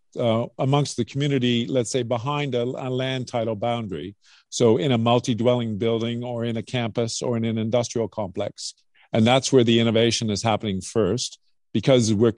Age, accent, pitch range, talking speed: 50-69, American, 110-130 Hz, 175 wpm